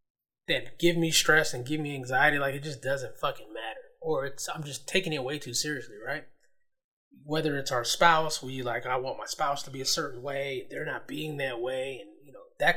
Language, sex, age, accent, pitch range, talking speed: English, male, 20-39, American, 140-195 Hz, 225 wpm